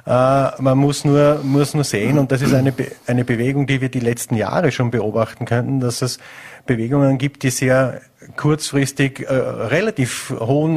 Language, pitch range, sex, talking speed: German, 125-140 Hz, male, 180 wpm